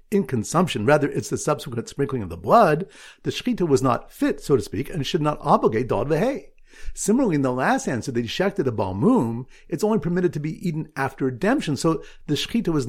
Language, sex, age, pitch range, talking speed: English, male, 50-69, 130-195 Hz, 205 wpm